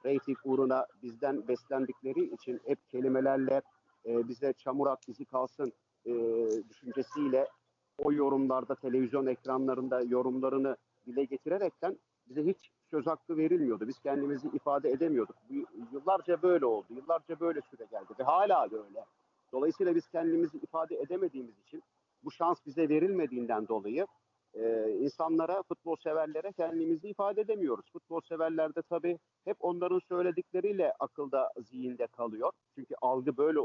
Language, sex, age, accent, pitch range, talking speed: Turkish, male, 50-69, native, 130-175 Hz, 120 wpm